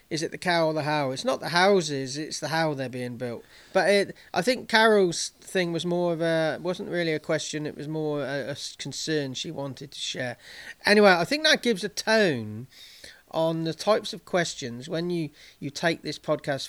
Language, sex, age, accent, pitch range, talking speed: English, male, 40-59, British, 140-180 Hz, 210 wpm